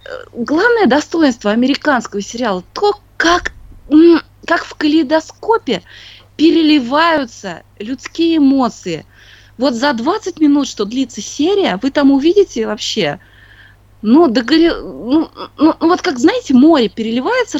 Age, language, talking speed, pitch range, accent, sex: 20-39, Russian, 115 wpm, 210-315 Hz, native, female